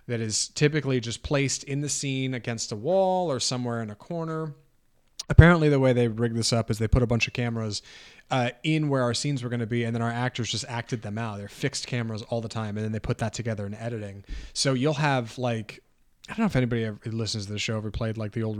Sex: male